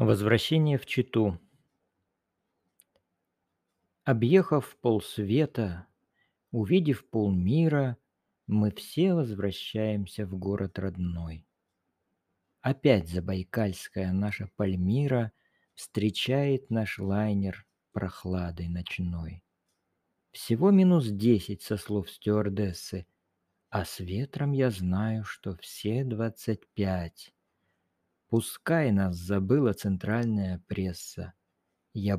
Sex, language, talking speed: male, Russian, 80 wpm